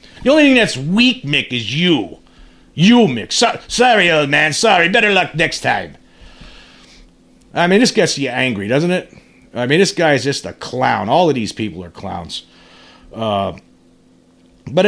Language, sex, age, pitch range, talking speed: English, male, 40-59, 115-175 Hz, 175 wpm